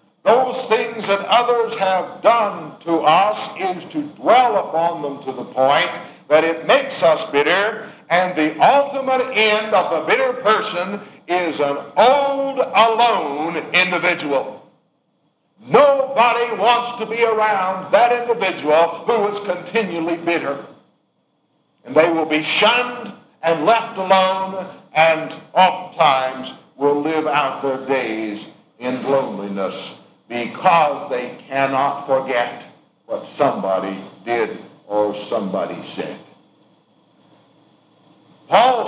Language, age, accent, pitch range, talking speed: English, 60-79, American, 150-225 Hz, 115 wpm